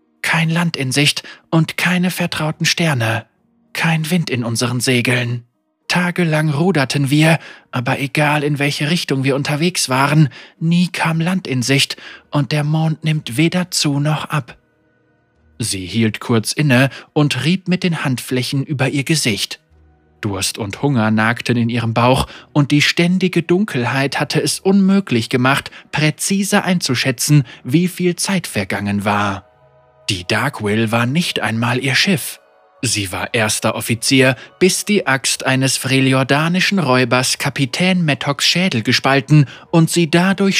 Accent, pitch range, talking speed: German, 115-160 Hz, 140 wpm